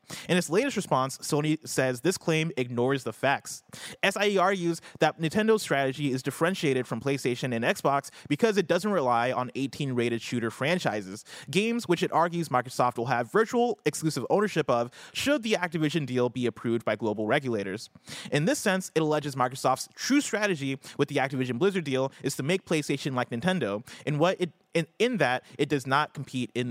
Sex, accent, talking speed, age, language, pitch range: male, American, 175 wpm, 30-49, English, 125-180 Hz